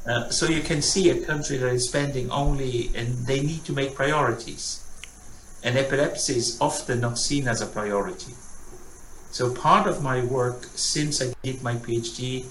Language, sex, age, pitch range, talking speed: English, male, 60-79, 115-135 Hz, 175 wpm